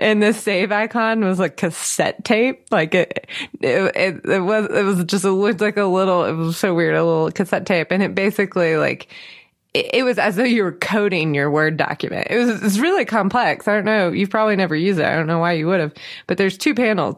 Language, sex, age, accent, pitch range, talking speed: English, female, 20-39, American, 165-215 Hz, 245 wpm